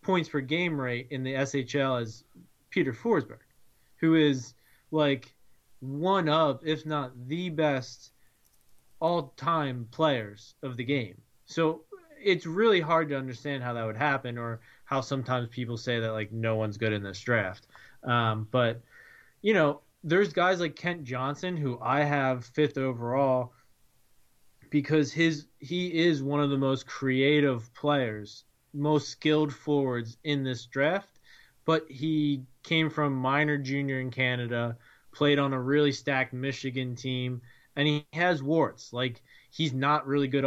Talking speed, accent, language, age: 150 wpm, American, English, 20-39